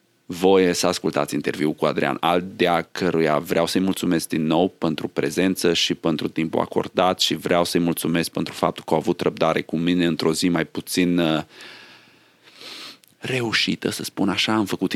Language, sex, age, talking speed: Romanian, male, 30-49, 165 wpm